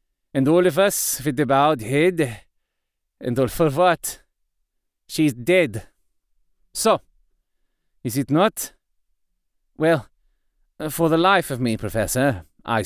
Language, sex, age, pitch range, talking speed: English, male, 30-49, 130-195 Hz, 120 wpm